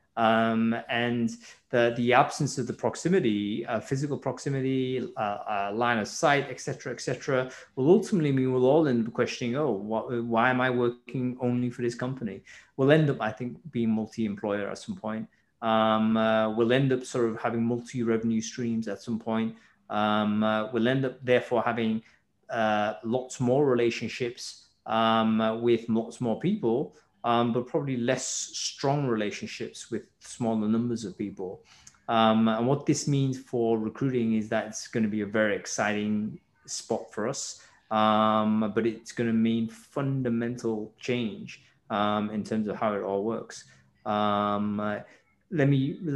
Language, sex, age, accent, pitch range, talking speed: English, male, 20-39, British, 110-130 Hz, 165 wpm